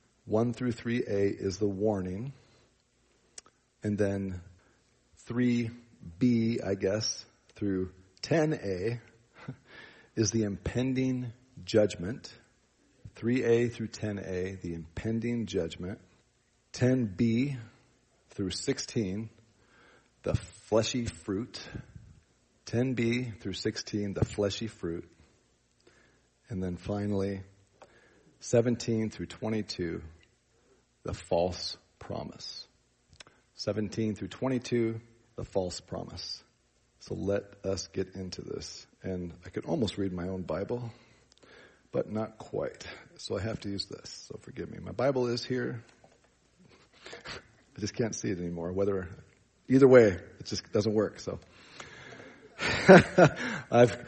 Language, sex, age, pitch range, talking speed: English, male, 40-59, 95-120 Hz, 105 wpm